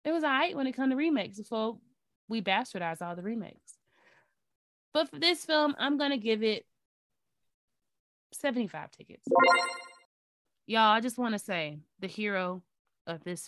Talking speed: 160 wpm